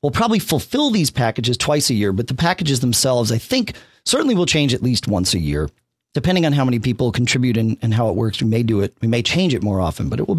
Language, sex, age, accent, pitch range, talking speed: English, male, 40-59, American, 115-160 Hz, 265 wpm